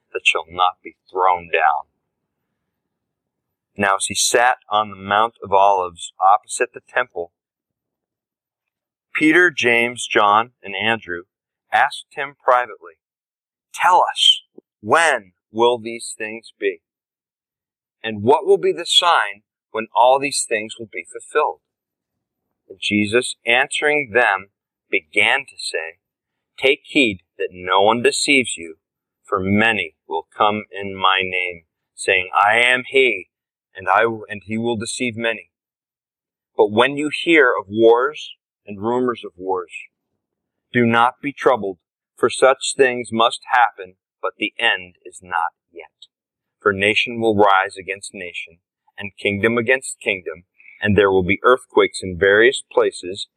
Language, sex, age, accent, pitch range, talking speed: English, male, 40-59, American, 100-145 Hz, 135 wpm